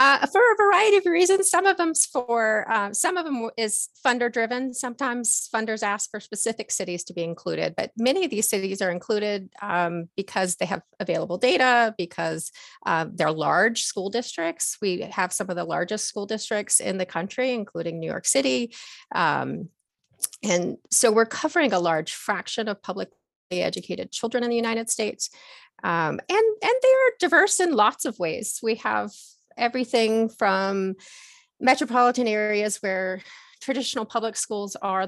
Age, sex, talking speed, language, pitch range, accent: 30-49, female, 165 wpm, English, 185-250 Hz, American